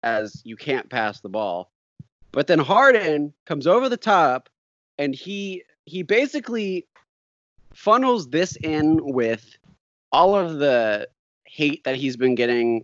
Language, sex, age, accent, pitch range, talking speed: English, male, 20-39, American, 115-160 Hz, 135 wpm